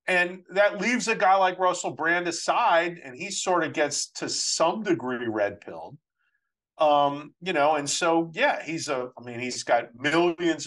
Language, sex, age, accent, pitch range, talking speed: English, male, 50-69, American, 120-165 Hz, 175 wpm